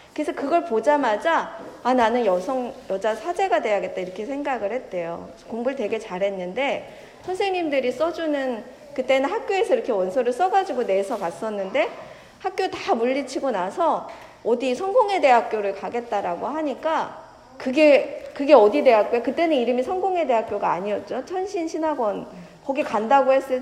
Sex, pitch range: female, 220-315 Hz